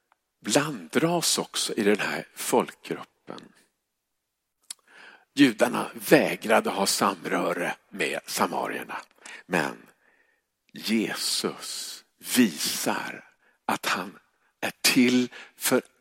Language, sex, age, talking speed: Swedish, male, 50-69, 75 wpm